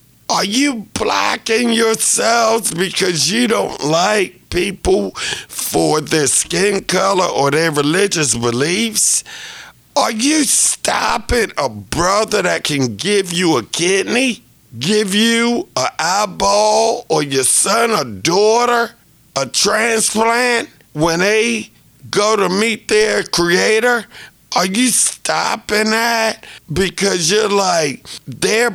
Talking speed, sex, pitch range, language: 115 wpm, male, 130-220 Hz, English